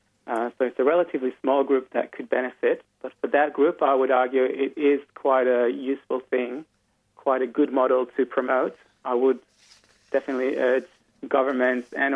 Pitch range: 120-140 Hz